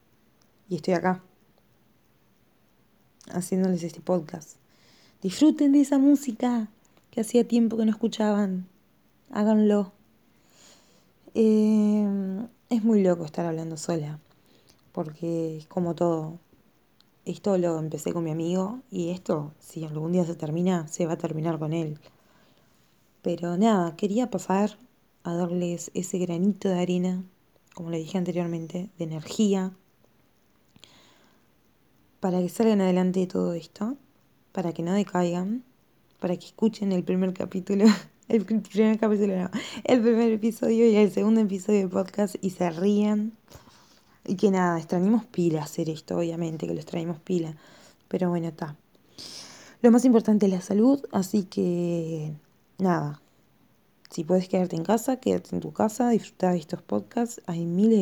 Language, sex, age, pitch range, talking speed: Spanish, female, 20-39, 170-215 Hz, 140 wpm